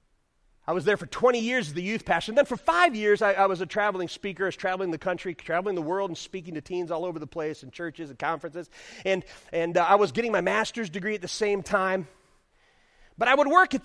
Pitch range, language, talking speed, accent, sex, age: 165-225 Hz, English, 255 wpm, American, male, 30-49